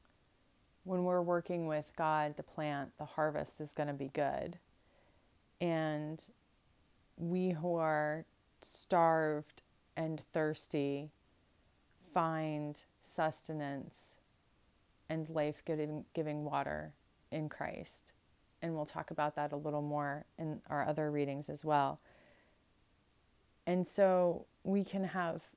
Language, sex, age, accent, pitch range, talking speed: English, female, 30-49, American, 145-165 Hz, 110 wpm